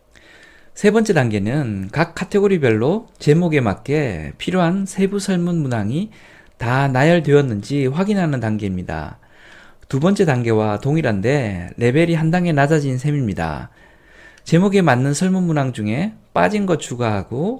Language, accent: Korean, native